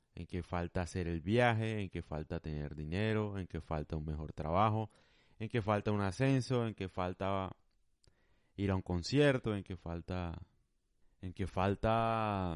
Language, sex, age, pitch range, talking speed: Spanish, male, 30-49, 95-115 Hz, 165 wpm